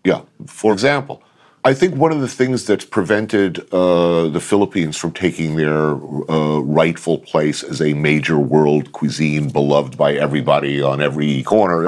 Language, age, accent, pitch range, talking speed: English, 50-69, American, 75-95 Hz, 155 wpm